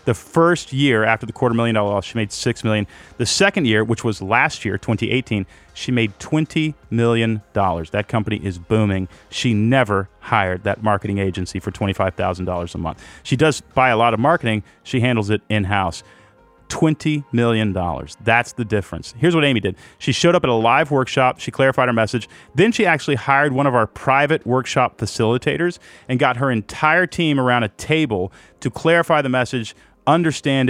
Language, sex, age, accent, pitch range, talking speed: English, male, 30-49, American, 105-140 Hz, 185 wpm